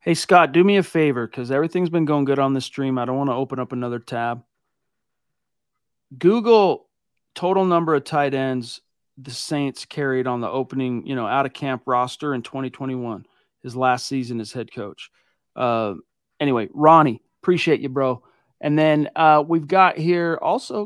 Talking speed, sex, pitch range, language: 170 wpm, male, 130-170 Hz, English